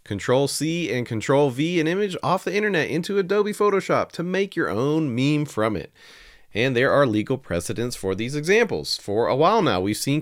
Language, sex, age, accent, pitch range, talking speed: English, male, 40-59, American, 110-165 Hz, 190 wpm